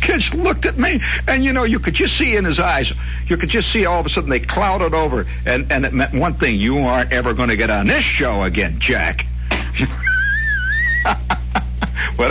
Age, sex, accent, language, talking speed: 60-79, male, American, English, 210 wpm